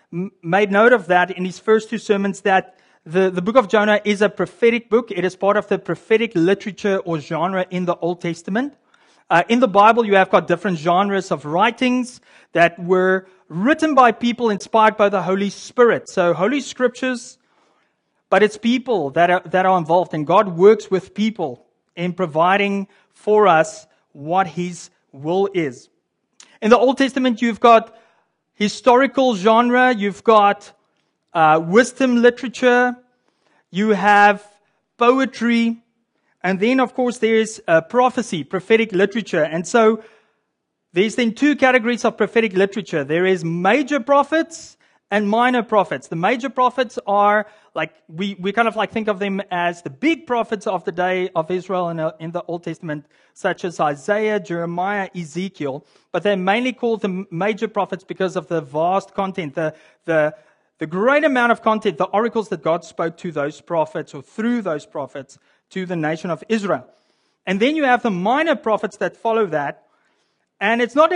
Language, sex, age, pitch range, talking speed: English, male, 30-49, 180-235 Hz, 165 wpm